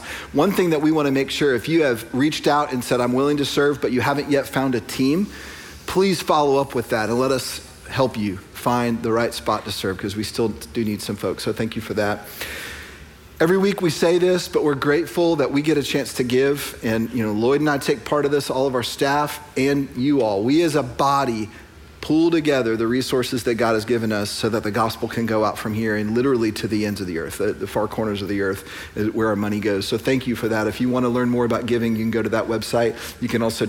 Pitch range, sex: 110-145 Hz, male